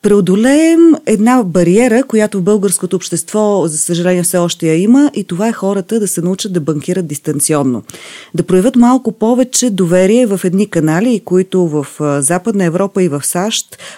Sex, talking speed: female, 165 wpm